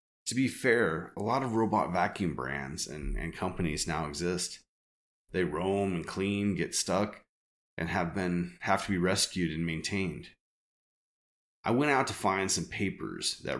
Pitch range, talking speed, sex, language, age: 85-110 Hz, 165 wpm, male, English, 30-49